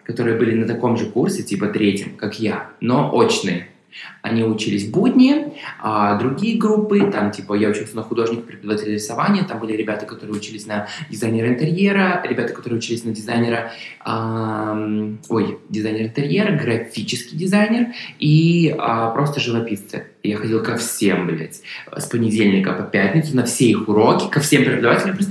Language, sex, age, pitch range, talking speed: Russian, male, 20-39, 115-150 Hz, 145 wpm